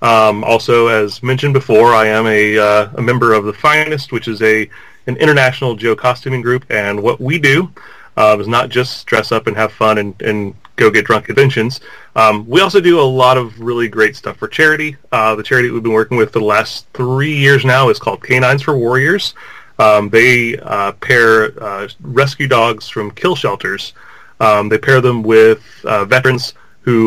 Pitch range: 110-135 Hz